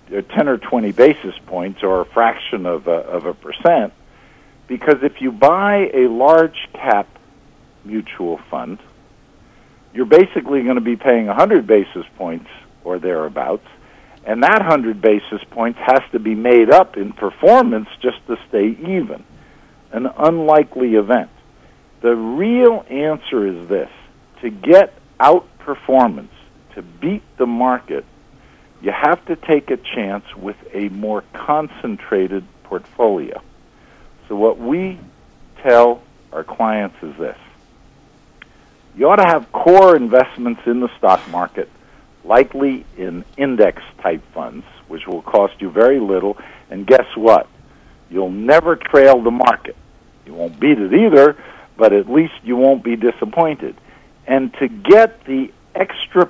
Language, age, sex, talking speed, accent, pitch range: English, 50-69, male, 140 wpm, American, 110-150 Hz